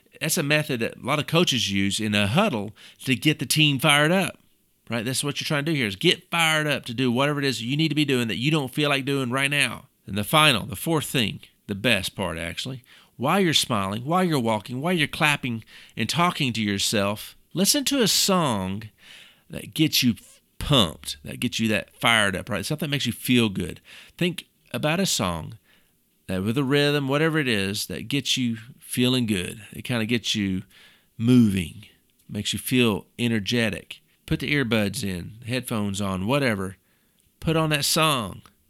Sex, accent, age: male, American, 40-59